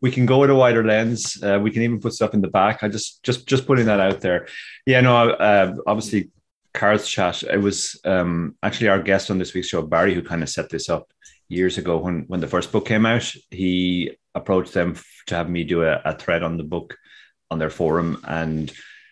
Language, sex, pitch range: English, male, 80-105 Hz